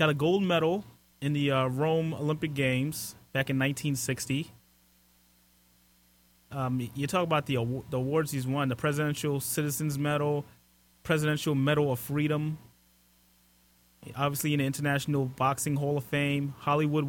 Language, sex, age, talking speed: English, male, 30-49, 140 wpm